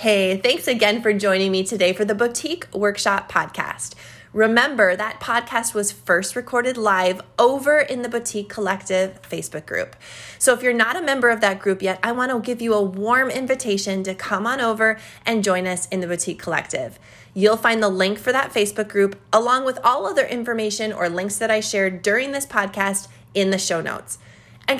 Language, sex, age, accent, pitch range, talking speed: English, female, 20-39, American, 195-240 Hz, 195 wpm